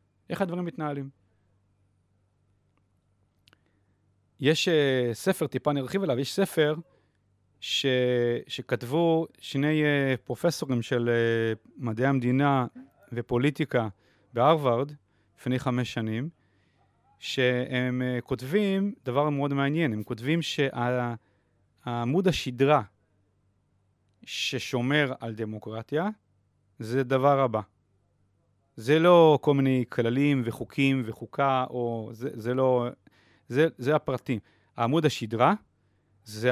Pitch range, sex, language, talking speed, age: 105-150 Hz, male, Hebrew, 90 wpm, 40-59